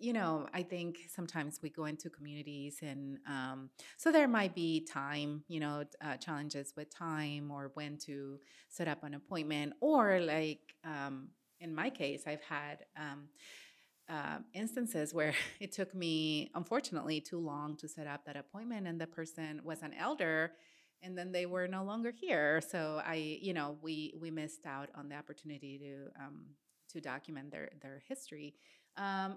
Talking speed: 170 wpm